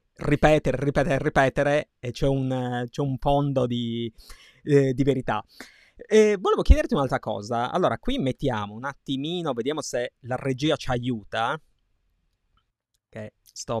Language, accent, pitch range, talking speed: Italian, native, 120-150 Hz, 135 wpm